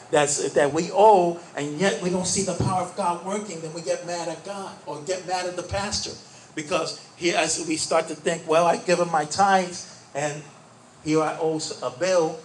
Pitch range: 140-180 Hz